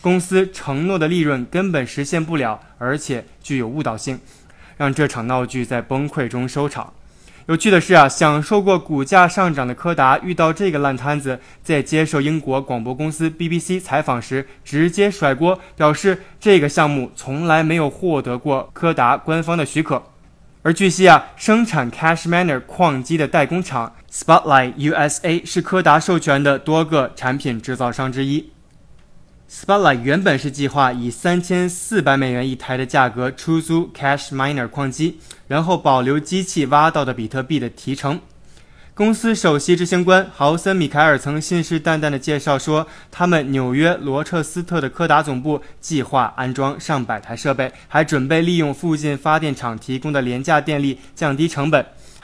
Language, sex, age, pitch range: Chinese, male, 20-39, 135-170 Hz